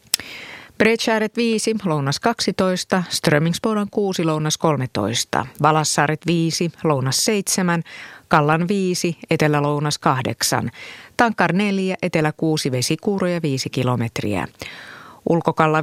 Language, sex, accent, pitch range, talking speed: Finnish, female, native, 145-185 Hz, 95 wpm